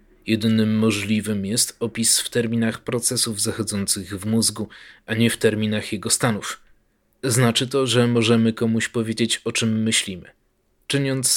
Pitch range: 105-120 Hz